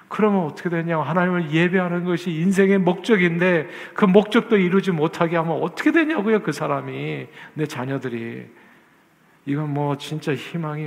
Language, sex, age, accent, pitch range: Korean, male, 50-69, native, 125-180 Hz